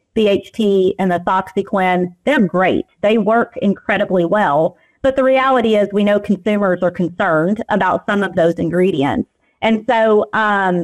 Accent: American